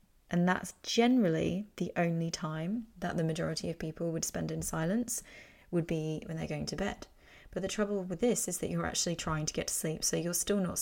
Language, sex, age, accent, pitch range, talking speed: English, female, 20-39, British, 155-180 Hz, 220 wpm